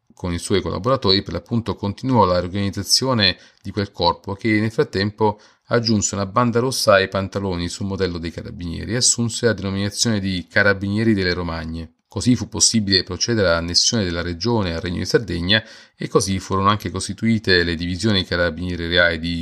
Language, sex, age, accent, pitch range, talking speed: Italian, male, 40-59, native, 90-110 Hz, 165 wpm